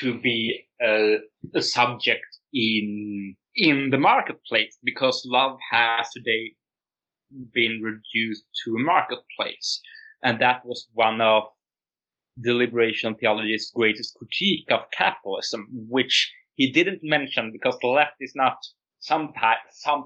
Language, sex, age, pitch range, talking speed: English, male, 30-49, 110-125 Hz, 125 wpm